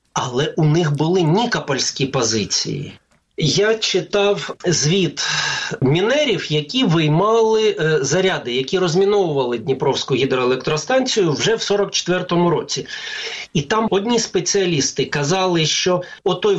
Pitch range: 145-200 Hz